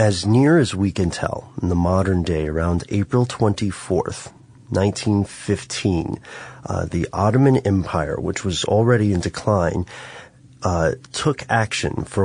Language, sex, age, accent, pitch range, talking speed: English, male, 30-49, American, 85-110 Hz, 135 wpm